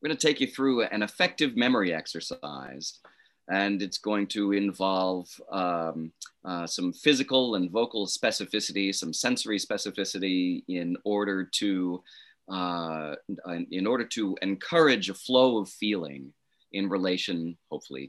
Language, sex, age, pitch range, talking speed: English, male, 30-49, 95-145 Hz, 135 wpm